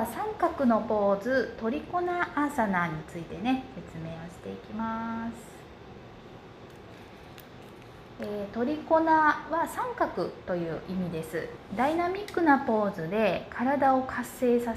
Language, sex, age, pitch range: Japanese, female, 20-39, 185-290 Hz